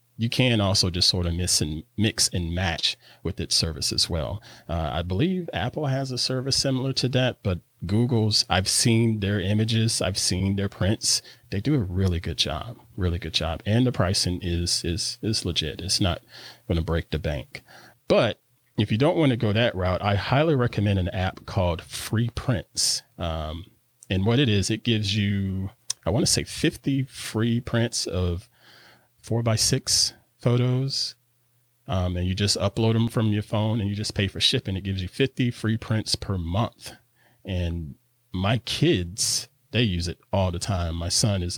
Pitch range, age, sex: 90-115 Hz, 40-59, male